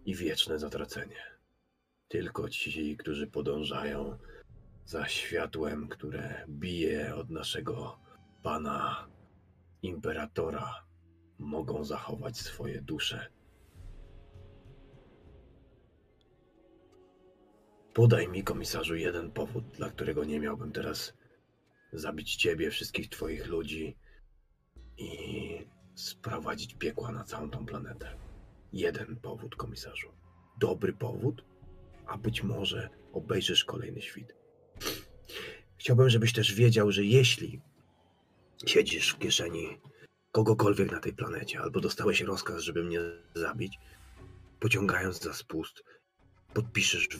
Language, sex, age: Polish, male, 40-59